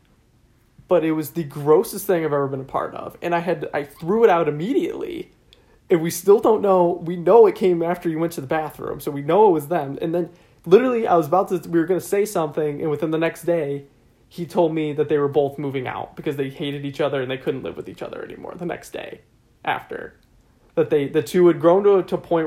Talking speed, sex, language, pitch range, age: 255 wpm, male, English, 145-185 Hz, 20-39